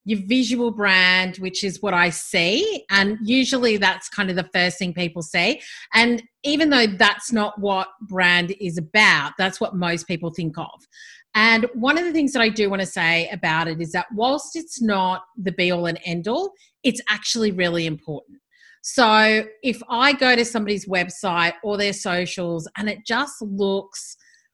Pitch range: 185-250 Hz